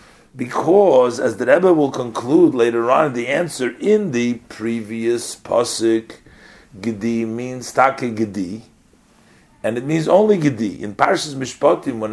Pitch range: 110-145 Hz